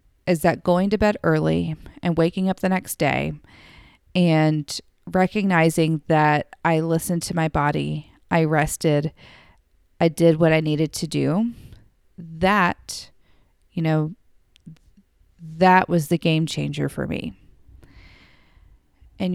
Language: English